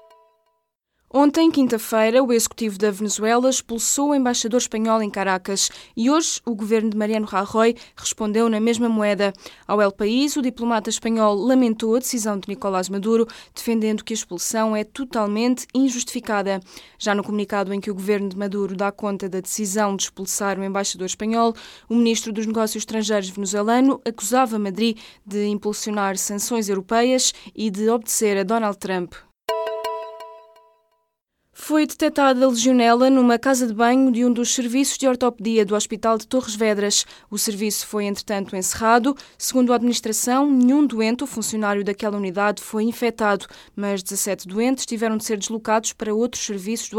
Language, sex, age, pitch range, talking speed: Portuguese, female, 20-39, 200-235 Hz, 160 wpm